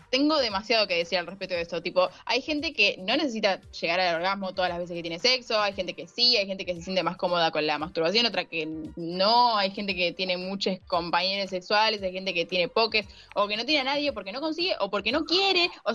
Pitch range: 185-250 Hz